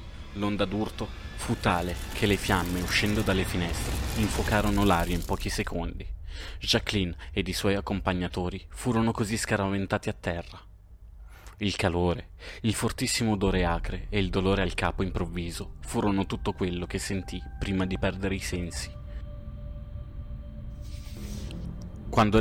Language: Italian